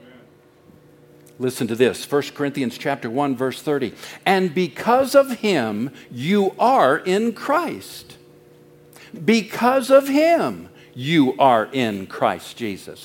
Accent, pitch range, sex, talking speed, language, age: American, 120-190 Hz, male, 115 wpm, English, 60-79